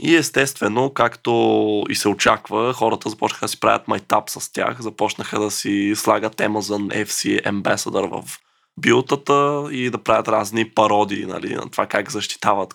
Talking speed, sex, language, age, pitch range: 160 wpm, male, Bulgarian, 20-39, 105-125 Hz